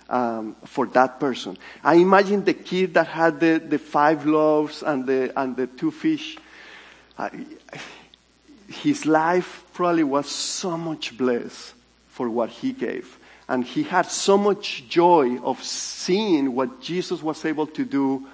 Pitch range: 135-190 Hz